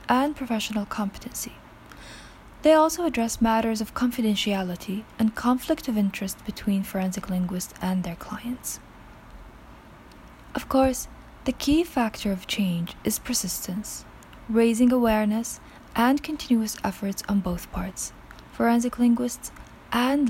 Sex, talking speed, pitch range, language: female, 115 wpm, 195-245 Hz, English